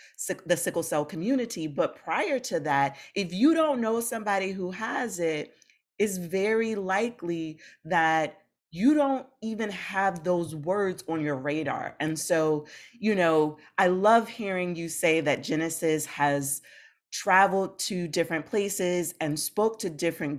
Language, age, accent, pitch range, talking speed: English, 30-49, American, 155-205 Hz, 145 wpm